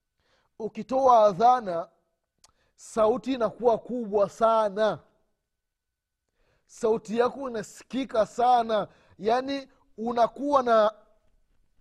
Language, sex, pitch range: Swahili, male, 160-245 Hz